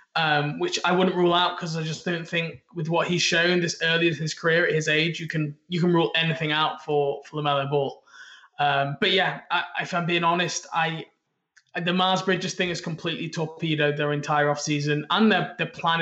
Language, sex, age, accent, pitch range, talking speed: English, male, 20-39, British, 150-175 Hz, 215 wpm